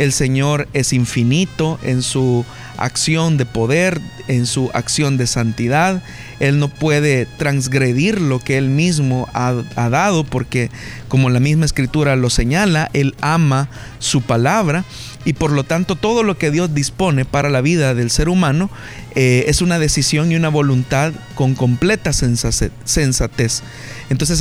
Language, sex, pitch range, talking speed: Spanish, male, 125-155 Hz, 150 wpm